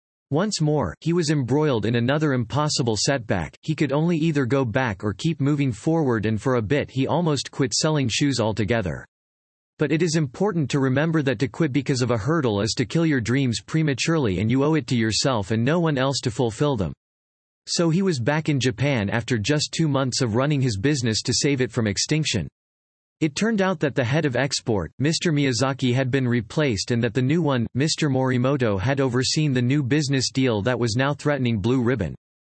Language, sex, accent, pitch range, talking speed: English, male, American, 115-150 Hz, 205 wpm